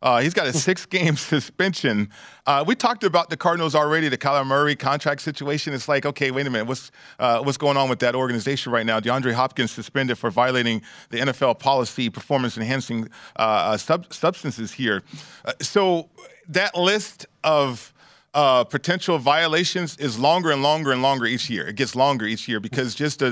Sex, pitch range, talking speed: male, 130-155 Hz, 185 wpm